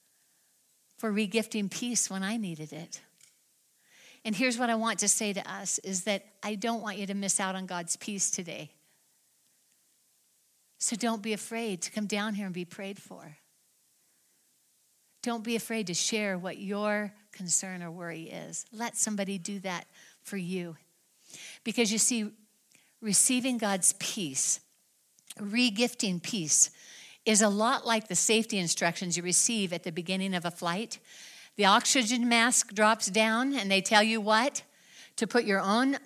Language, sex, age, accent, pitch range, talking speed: English, female, 60-79, American, 180-220 Hz, 160 wpm